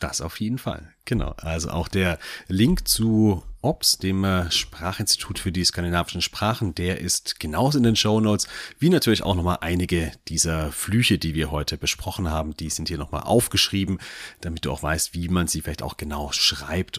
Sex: male